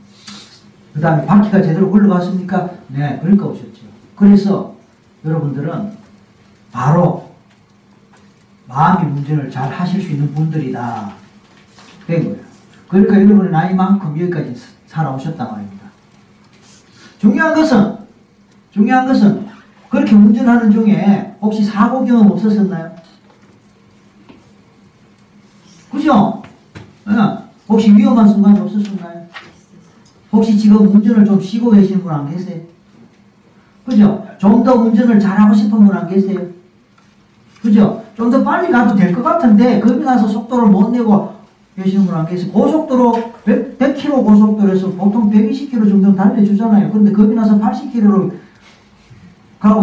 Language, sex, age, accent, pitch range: Korean, male, 40-59, native, 190-225 Hz